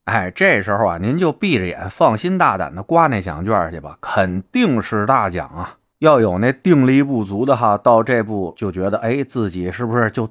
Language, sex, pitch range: Chinese, male, 95-130 Hz